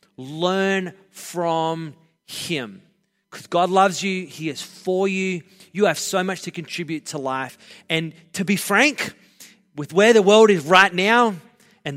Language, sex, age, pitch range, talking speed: English, male, 30-49, 155-205 Hz, 155 wpm